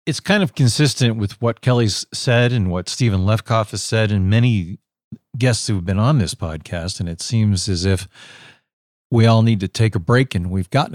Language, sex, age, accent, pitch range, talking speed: English, male, 50-69, American, 95-115 Hz, 210 wpm